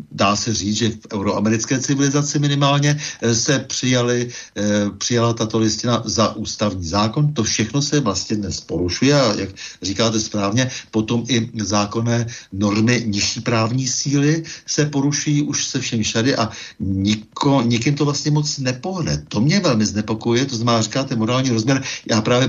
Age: 60-79